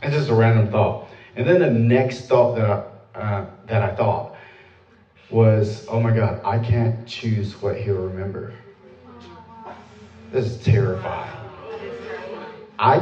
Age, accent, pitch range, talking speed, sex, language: 30-49, American, 105-130 Hz, 130 wpm, male, English